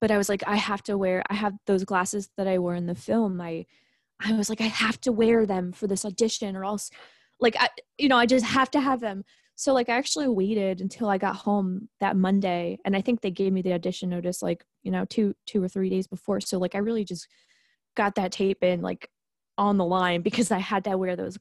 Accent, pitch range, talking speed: American, 175-210 Hz, 250 wpm